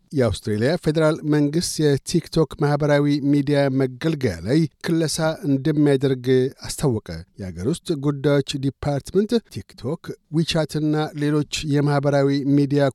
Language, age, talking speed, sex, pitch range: Amharic, 60-79, 95 wpm, male, 135-155 Hz